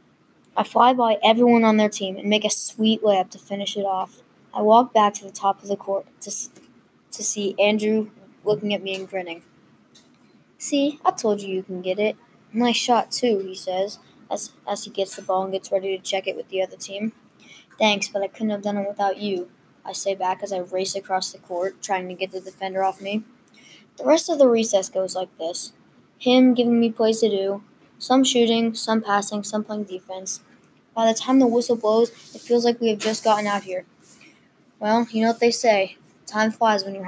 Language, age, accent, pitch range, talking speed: English, 20-39, American, 195-230 Hz, 220 wpm